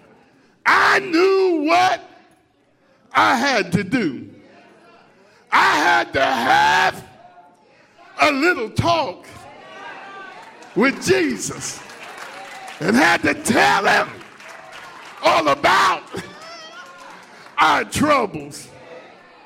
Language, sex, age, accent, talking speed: English, male, 50-69, American, 75 wpm